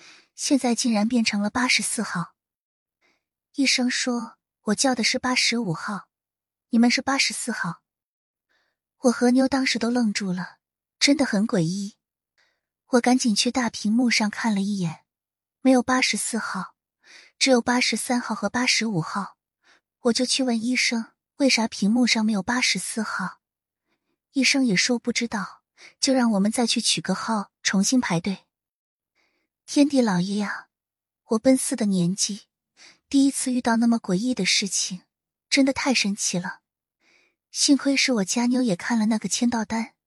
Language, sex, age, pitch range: Chinese, female, 20-39, 205-255 Hz